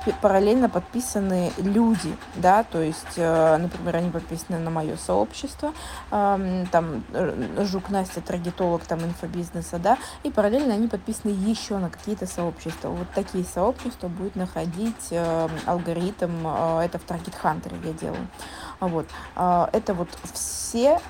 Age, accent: 20-39, native